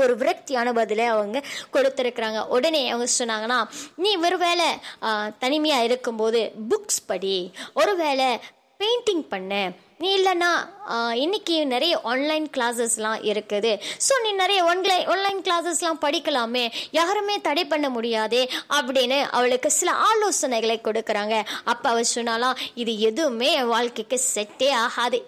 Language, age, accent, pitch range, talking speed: Tamil, 20-39, native, 235-325 Hz, 115 wpm